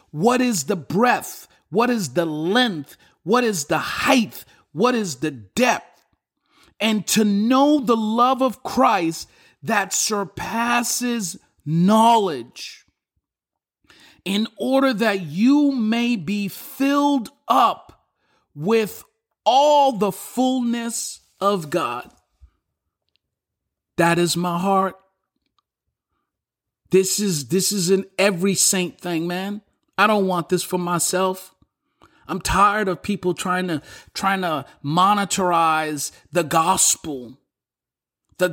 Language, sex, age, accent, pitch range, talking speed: English, male, 50-69, American, 175-220 Hz, 110 wpm